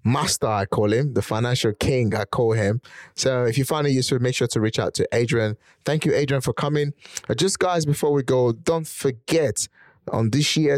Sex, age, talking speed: male, 20-39, 215 wpm